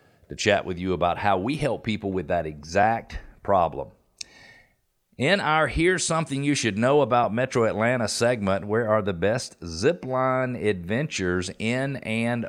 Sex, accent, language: male, American, English